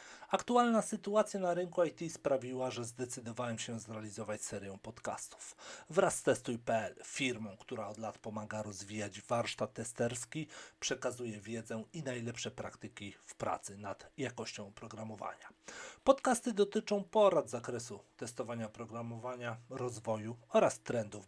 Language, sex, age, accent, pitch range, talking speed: Polish, male, 40-59, native, 110-130 Hz, 120 wpm